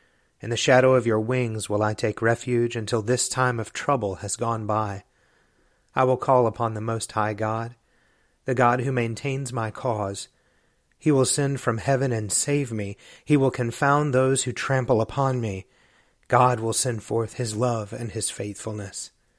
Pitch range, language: 110-130 Hz, English